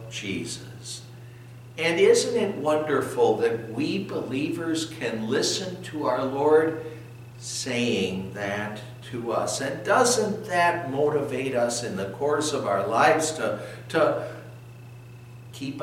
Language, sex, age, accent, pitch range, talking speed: English, male, 60-79, American, 120-140 Hz, 120 wpm